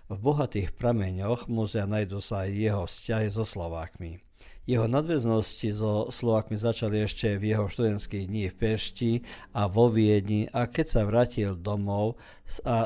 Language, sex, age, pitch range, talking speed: Croatian, male, 50-69, 105-120 Hz, 145 wpm